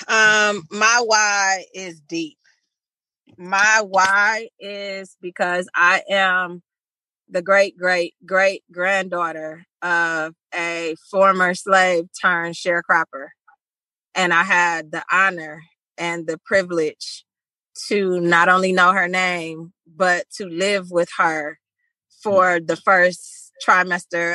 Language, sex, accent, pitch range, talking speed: English, female, American, 170-195 Hz, 110 wpm